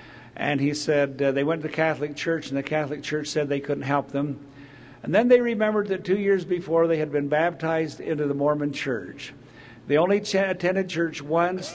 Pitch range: 135-170 Hz